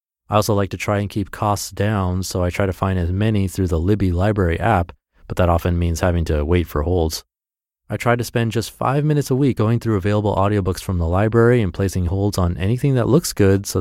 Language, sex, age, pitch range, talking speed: English, male, 30-49, 90-110 Hz, 240 wpm